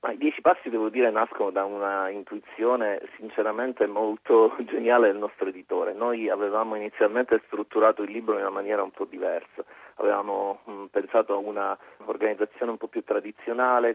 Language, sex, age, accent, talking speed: Italian, male, 40-59, native, 160 wpm